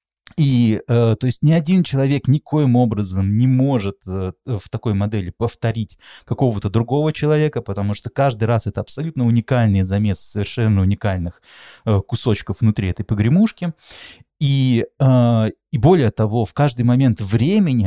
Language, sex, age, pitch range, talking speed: Russian, male, 20-39, 105-140 Hz, 130 wpm